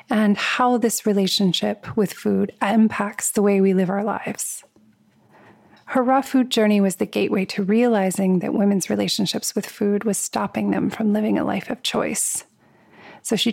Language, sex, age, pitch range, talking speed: English, female, 30-49, 195-220 Hz, 170 wpm